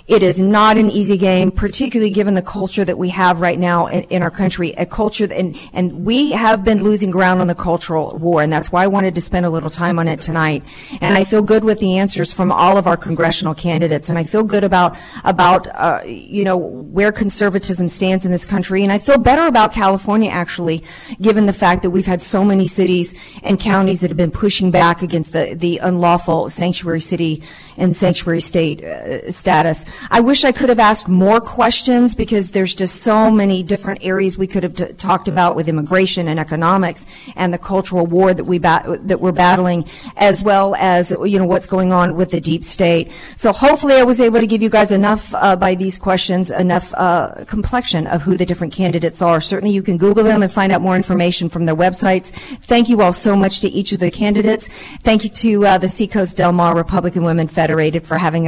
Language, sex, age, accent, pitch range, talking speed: English, female, 40-59, American, 175-205 Hz, 220 wpm